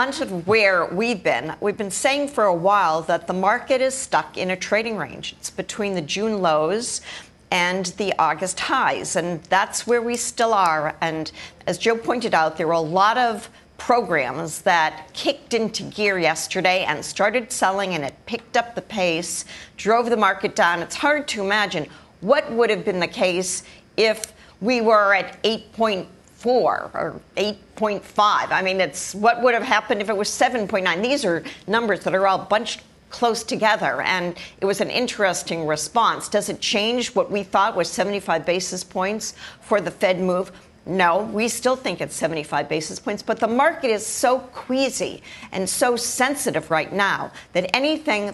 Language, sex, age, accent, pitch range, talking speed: English, female, 50-69, American, 185-230 Hz, 175 wpm